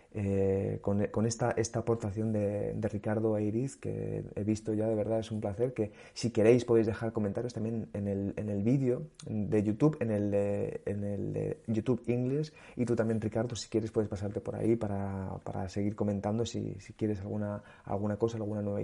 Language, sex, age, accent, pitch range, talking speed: Spanish, male, 30-49, Spanish, 105-120 Hz, 200 wpm